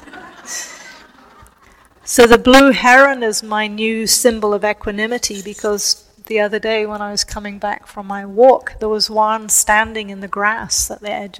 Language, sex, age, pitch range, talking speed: English, female, 40-59, 205-225 Hz, 170 wpm